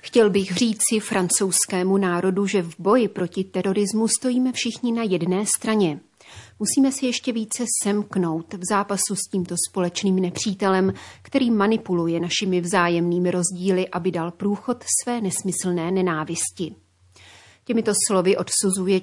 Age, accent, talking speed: 30-49, native, 125 wpm